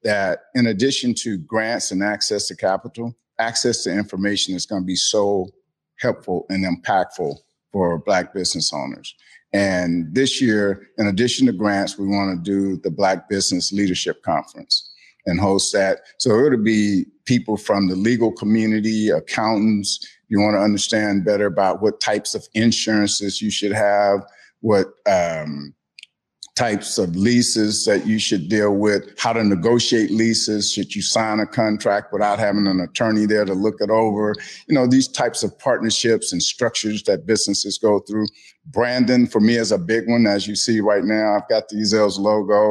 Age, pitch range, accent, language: 50-69, 100-115 Hz, American, English